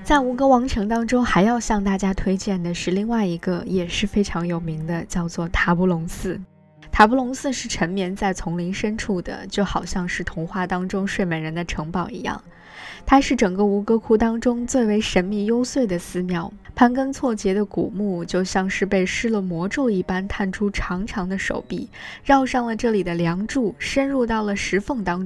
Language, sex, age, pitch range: Chinese, female, 20-39, 180-230 Hz